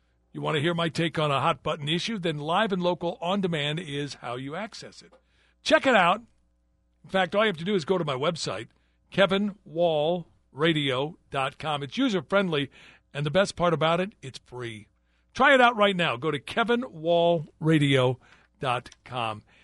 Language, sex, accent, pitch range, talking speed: English, male, American, 125-175 Hz, 175 wpm